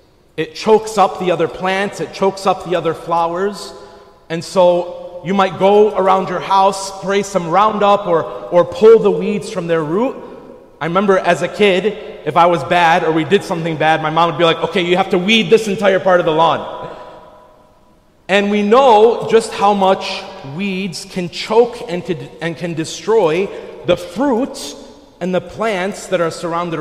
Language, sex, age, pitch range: English, male, 40-59, 165-205 Hz